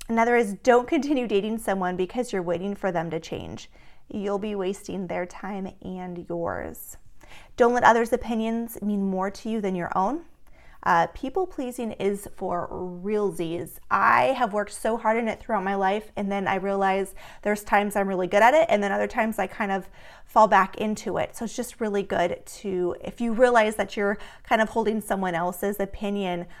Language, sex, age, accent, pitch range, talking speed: English, female, 30-49, American, 190-230 Hz, 195 wpm